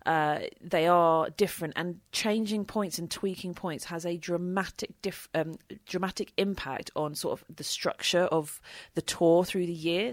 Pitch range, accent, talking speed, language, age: 155-180 Hz, British, 155 wpm, English, 30-49